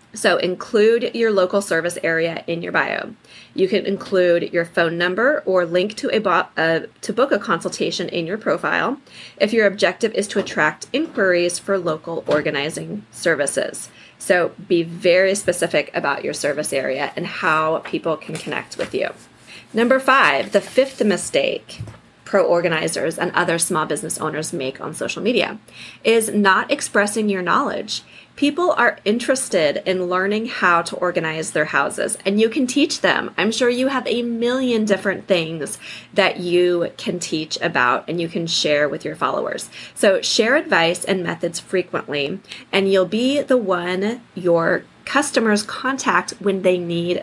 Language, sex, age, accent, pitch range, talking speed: English, female, 30-49, American, 170-220 Hz, 160 wpm